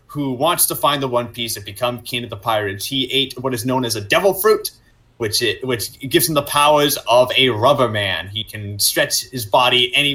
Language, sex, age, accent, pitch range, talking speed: English, male, 30-49, American, 115-145 Hz, 230 wpm